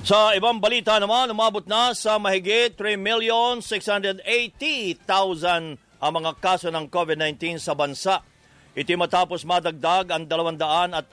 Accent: Filipino